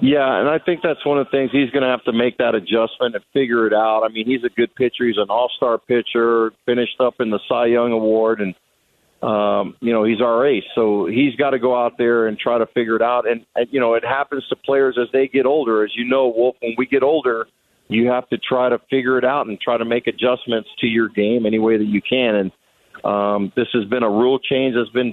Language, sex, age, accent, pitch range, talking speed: English, male, 40-59, American, 115-130 Hz, 260 wpm